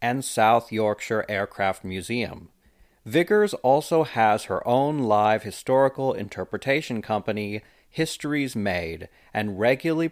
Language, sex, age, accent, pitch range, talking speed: English, male, 40-59, American, 105-150 Hz, 105 wpm